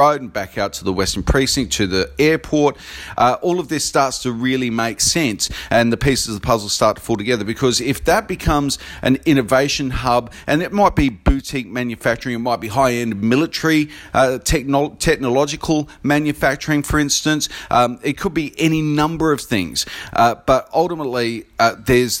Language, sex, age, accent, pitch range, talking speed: English, male, 40-59, Australian, 115-150 Hz, 175 wpm